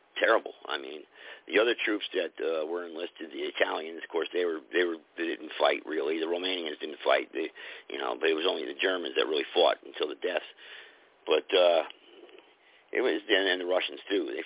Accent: American